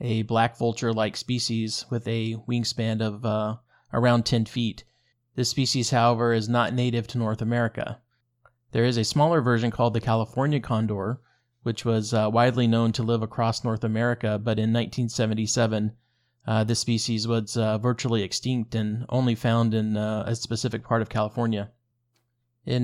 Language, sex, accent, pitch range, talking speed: English, male, American, 110-120 Hz, 160 wpm